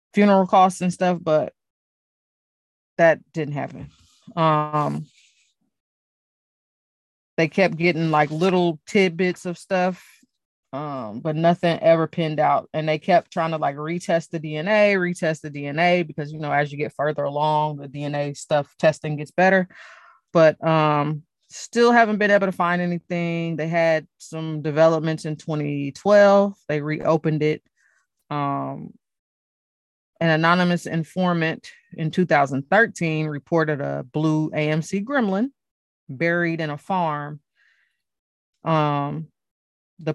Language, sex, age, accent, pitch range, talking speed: English, female, 20-39, American, 150-175 Hz, 125 wpm